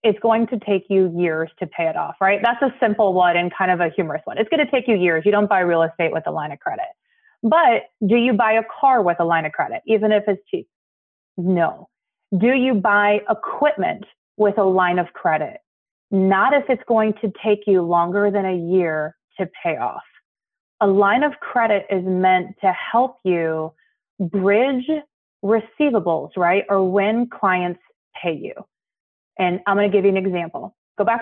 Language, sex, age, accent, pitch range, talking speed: English, female, 30-49, American, 180-235 Hz, 200 wpm